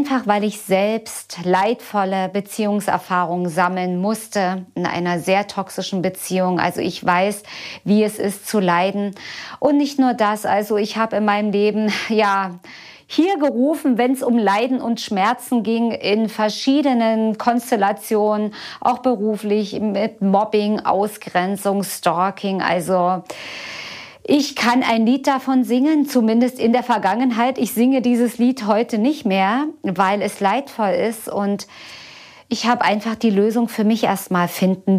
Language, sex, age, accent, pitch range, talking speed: German, female, 40-59, German, 195-240 Hz, 140 wpm